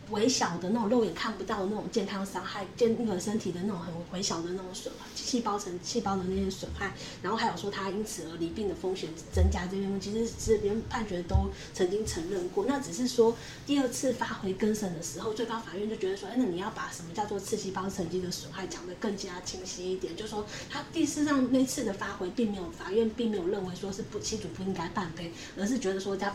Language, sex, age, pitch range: Chinese, female, 20-39, 185-225 Hz